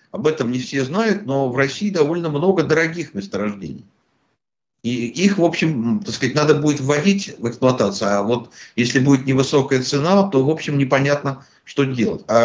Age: 60-79